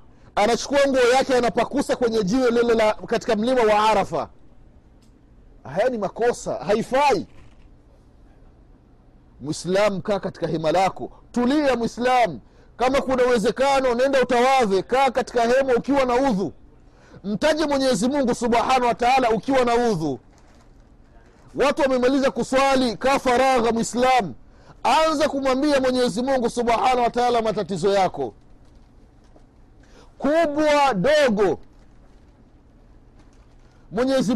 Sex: male